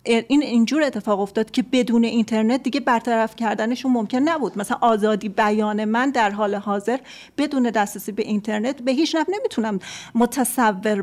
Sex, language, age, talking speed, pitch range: female, Persian, 40-59, 150 wpm, 210-250 Hz